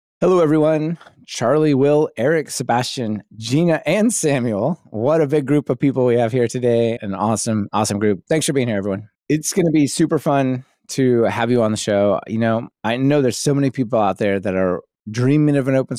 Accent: American